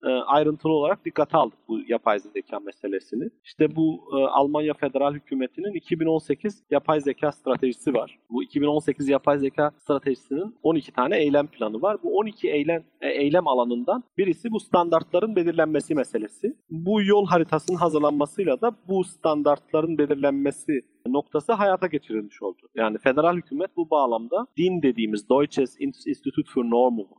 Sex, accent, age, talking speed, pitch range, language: male, native, 40-59, 140 wpm, 135-190 Hz, Turkish